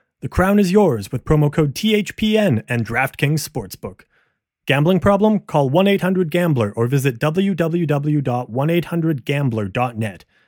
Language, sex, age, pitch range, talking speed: English, male, 30-49, 130-175 Hz, 105 wpm